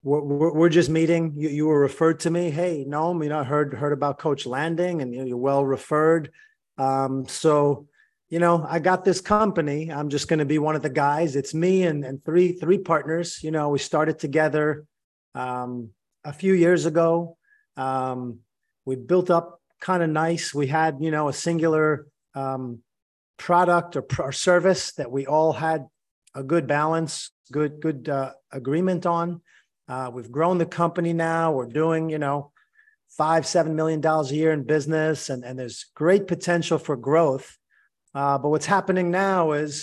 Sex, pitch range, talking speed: male, 145-170 Hz, 180 wpm